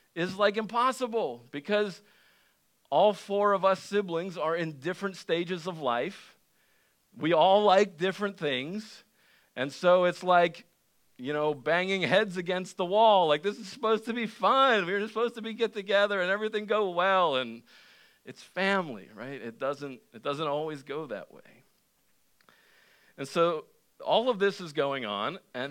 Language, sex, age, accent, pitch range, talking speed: English, male, 50-69, American, 145-205 Hz, 160 wpm